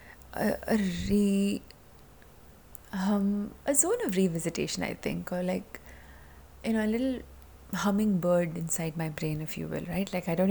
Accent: Indian